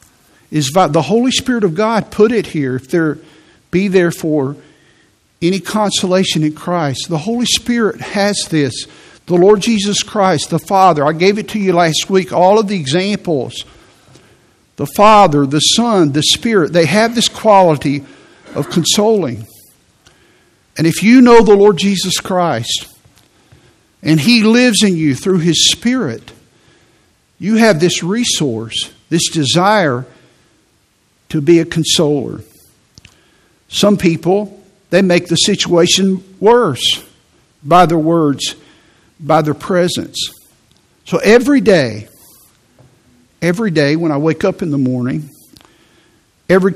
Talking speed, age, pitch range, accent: 135 wpm, 50-69, 150-200 Hz, American